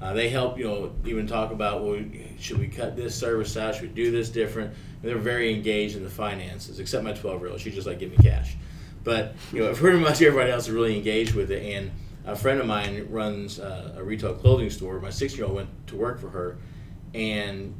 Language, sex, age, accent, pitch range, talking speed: English, male, 30-49, American, 105-125 Hz, 235 wpm